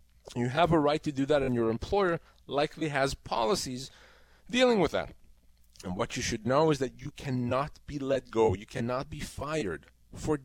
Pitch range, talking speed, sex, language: 130-170 Hz, 190 wpm, male, English